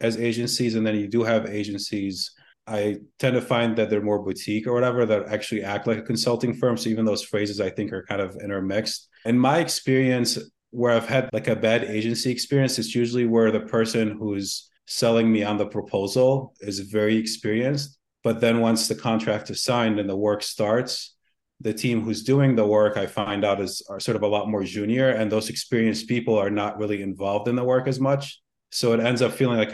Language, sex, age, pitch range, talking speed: English, male, 30-49, 105-120 Hz, 215 wpm